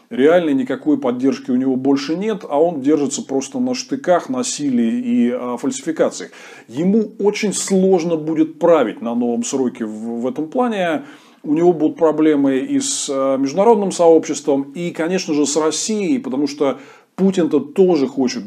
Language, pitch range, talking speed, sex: Russian, 140-215 Hz, 145 wpm, male